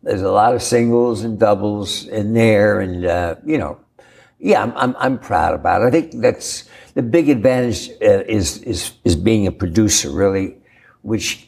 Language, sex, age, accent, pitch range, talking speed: English, male, 60-79, American, 100-125 Hz, 185 wpm